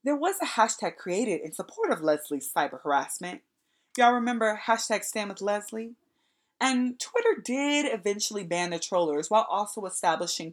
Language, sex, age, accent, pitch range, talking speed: English, female, 20-39, American, 175-280 Hz, 140 wpm